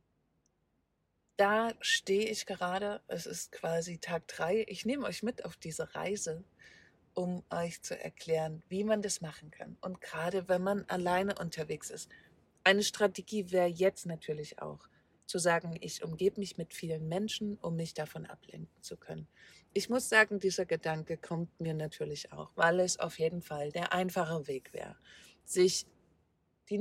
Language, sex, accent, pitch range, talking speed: German, female, German, 165-210 Hz, 160 wpm